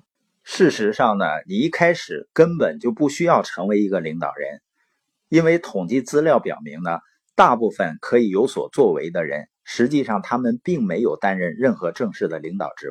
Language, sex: Chinese, male